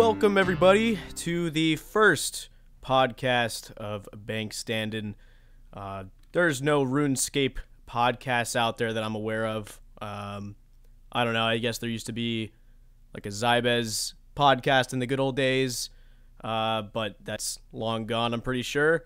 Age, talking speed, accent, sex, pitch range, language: 20-39, 150 wpm, American, male, 115-135 Hz, English